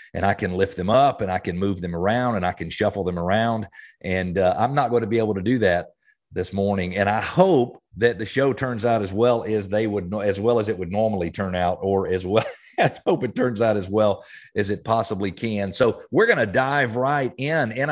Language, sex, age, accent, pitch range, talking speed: English, male, 40-59, American, 100-120 Hz, 250 wpm